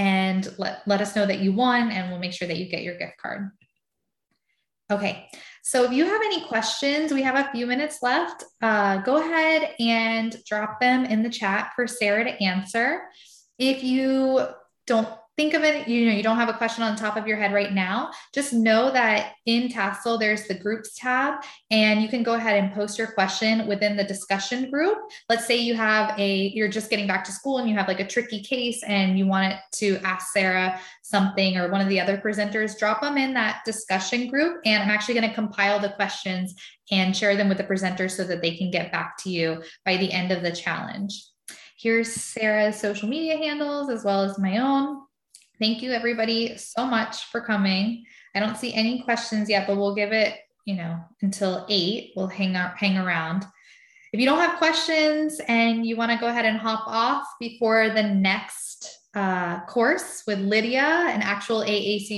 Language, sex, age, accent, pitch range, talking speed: English, female, 10-29, American, 195-240 Hz, 205 wpm